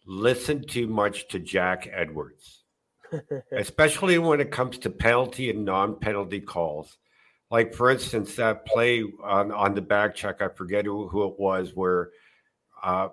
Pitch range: 100-140 Hz